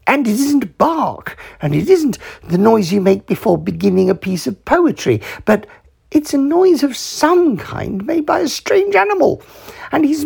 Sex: male